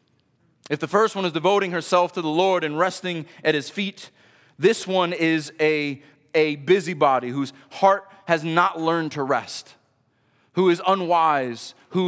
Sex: male